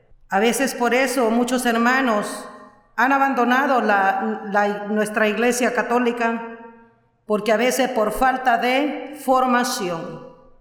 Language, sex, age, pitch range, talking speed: Spanish, female, 40-59, 215-255 Hz, 115 wpm